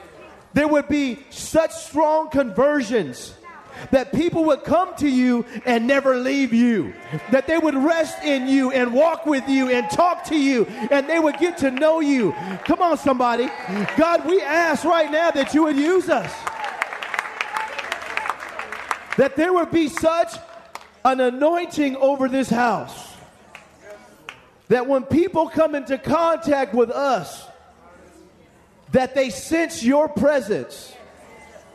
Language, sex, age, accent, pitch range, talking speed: English, male, 40-59, American, 265-315 Hz, 140 wpm